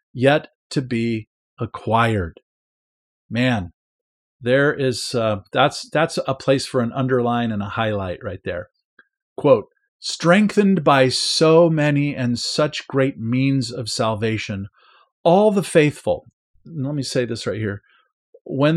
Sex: male